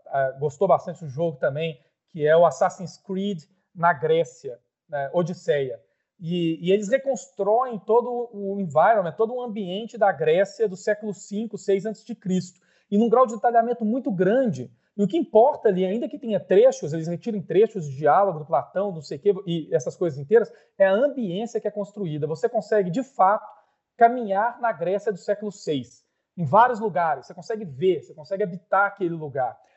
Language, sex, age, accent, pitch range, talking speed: Portuguese, male, 40-59, Brazilian, 175-225 Hz, 175 wpm